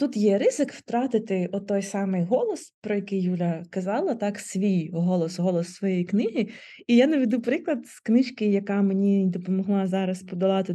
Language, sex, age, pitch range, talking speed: Ukrainian, female, 20-39, 190-235 Hz, 160 wpm